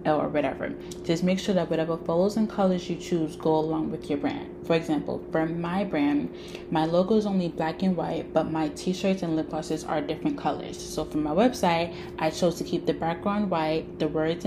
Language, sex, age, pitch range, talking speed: English, female, 10-29, 155-190 Hz, 210 wpm